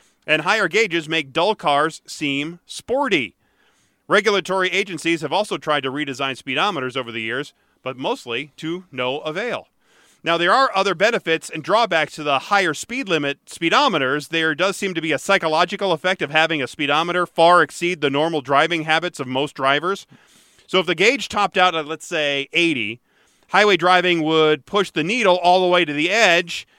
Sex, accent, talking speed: male, American, 180 wpm